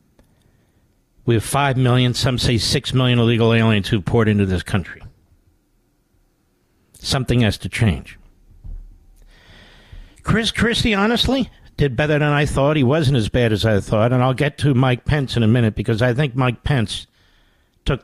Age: 60-79